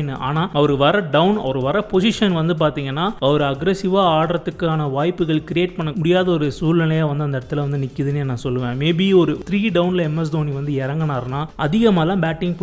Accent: native